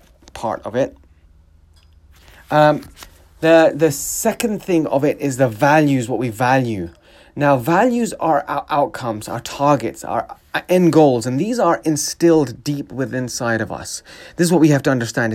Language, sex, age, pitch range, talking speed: English, male, 30-49, 120-150 Hz, 160 wpm